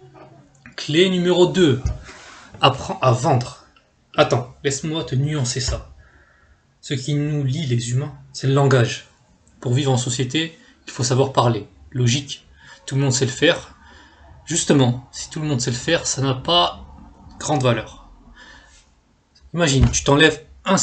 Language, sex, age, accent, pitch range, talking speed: French, male, 20-39, French, 125-150 Hz, 150 wpm